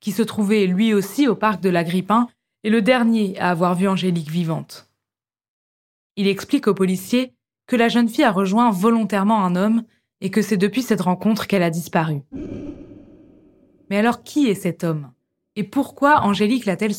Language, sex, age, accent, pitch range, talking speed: French, female, 20-39, French, 180-230 Hz, 175 wpm